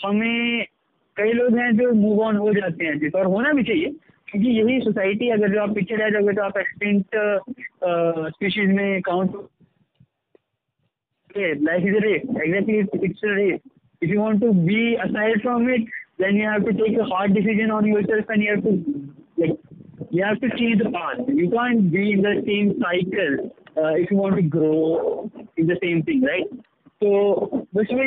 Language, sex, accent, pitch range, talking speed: Hindi, male, native, 185-225 Hz, 50 wpm